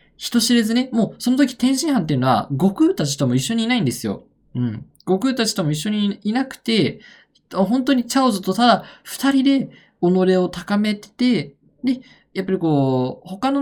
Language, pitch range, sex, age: Japanese, 145-235 Hz, male, 20-39